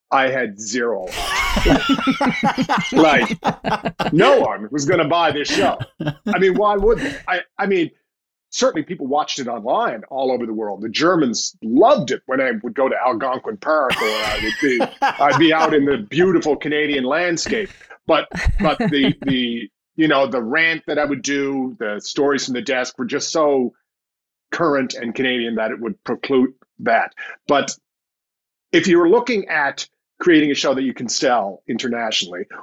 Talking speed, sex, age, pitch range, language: 170 wpm, male, 40-59, 130-190 Hz, English